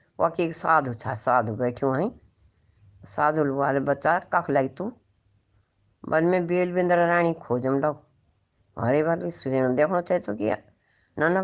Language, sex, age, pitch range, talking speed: Hindi, female, 60-79, 105-150 Hz, 135 wpm